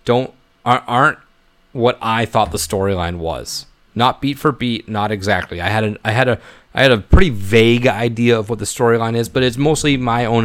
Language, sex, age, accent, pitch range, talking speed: English, male, 30-49, American, 95-115 Hz, 210 wpm